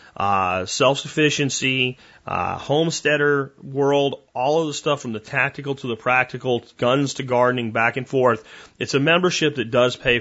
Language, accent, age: English, American, 30-49